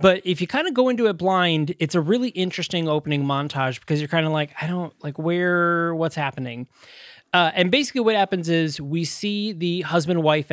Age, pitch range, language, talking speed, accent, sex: 20-39, 140-175 Hz, English, 210 wpm, American, male